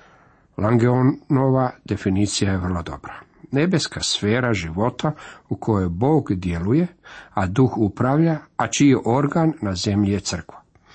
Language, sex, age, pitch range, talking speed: Croatian, male, 50-69, 100-140 Hz, 120 wpm